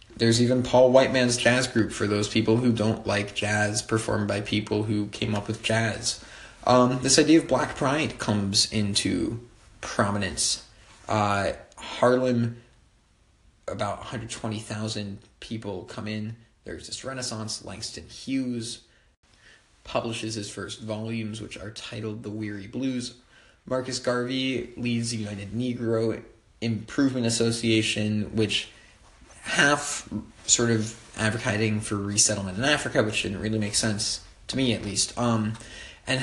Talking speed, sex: 135 wpm, male